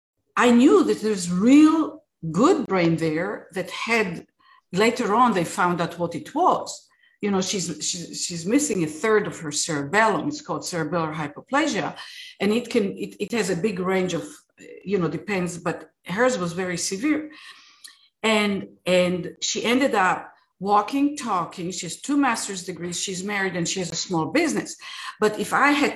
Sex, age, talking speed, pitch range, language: female, 50-69, 175 wpm, 175-270 Hz, English